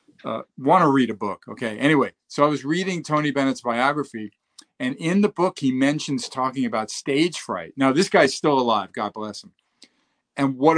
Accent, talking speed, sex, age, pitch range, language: American, 195 wpm, male, 50-69, 115-145 Hz, English